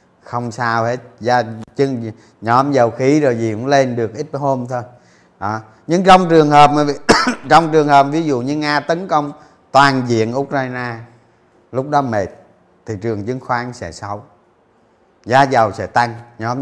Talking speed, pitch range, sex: 165 wpm, 120-165 Hz, male